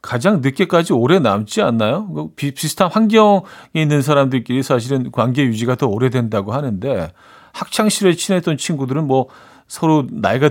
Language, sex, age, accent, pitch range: Korean, male, 40-59, native, 105-155 Hz